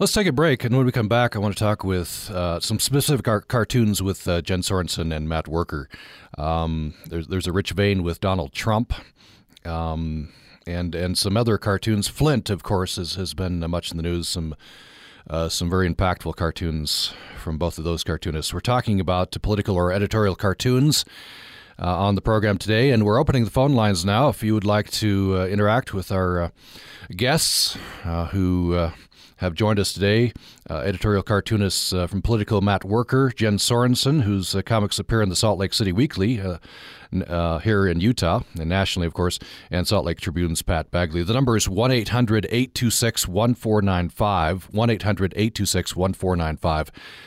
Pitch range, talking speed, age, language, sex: 85-110 Hz, 175 wpm, 40-59, English, male